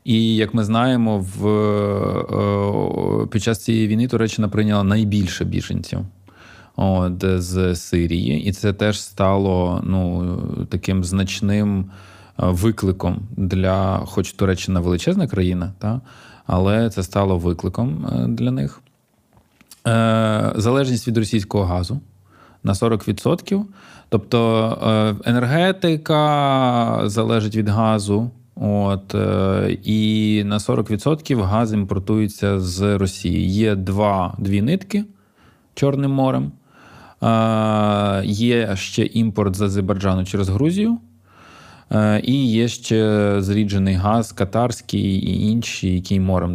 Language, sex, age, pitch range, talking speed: Ukrainian, male, 20-39, 95-115 Hz, 100 wpm